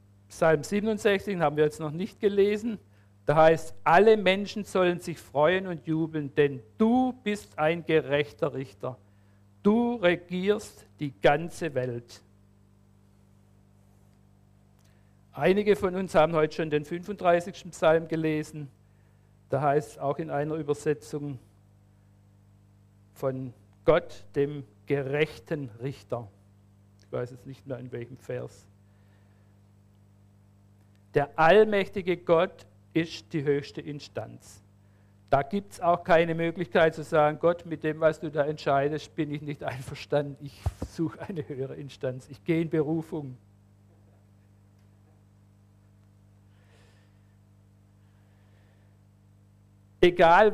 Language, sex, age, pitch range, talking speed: German, male, 50-69, 100-165 Hz, 115 wpm